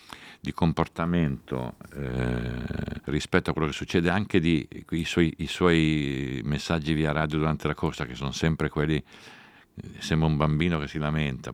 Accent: native